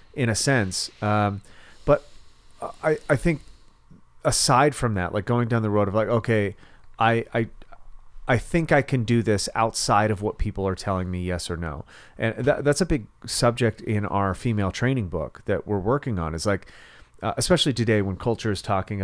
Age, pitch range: 30-49, 95-120 Hz